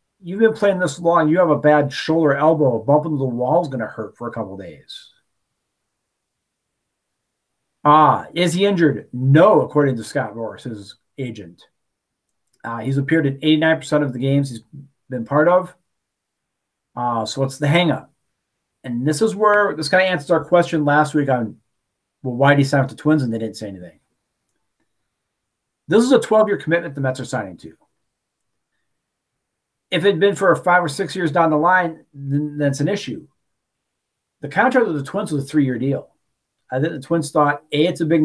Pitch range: 130-170 Hz